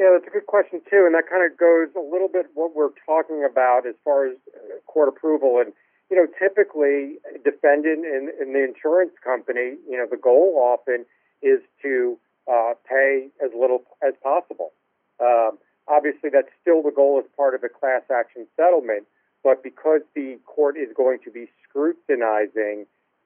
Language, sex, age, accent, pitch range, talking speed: English, male, 50-69, American, 125-185 Hz, 180 wpm